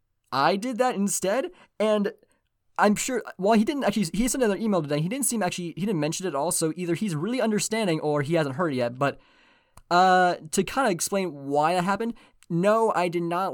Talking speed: 220 wpm